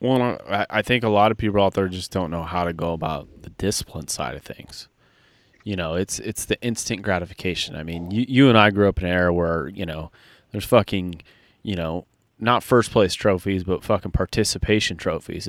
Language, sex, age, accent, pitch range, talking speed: English, male, 30-49, American, 95-120 Hz, 215 wpm